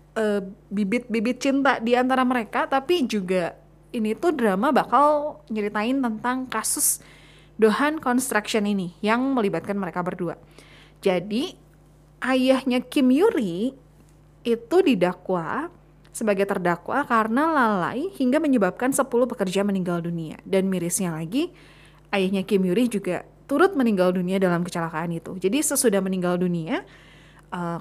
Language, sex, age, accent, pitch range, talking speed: Indonesian, female, 20-39, native, 185-250 Hz, 120 wpm